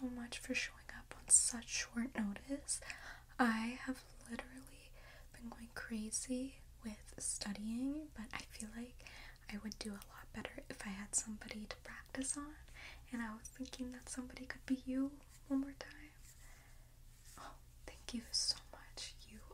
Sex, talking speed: female, 155 wpm